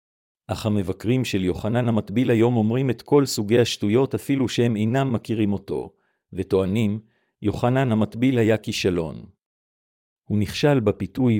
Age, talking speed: 50-69, 125 wpm